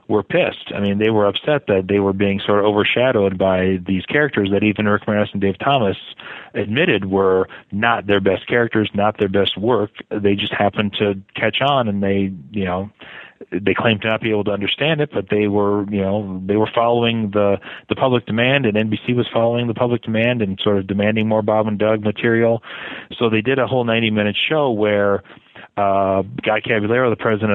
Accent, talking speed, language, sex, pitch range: American, 205 wpm, English, male, 100-115 Hz